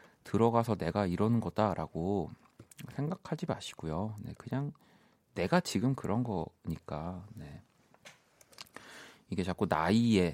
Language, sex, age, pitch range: Korean, male, 40-59, 95-135 Hz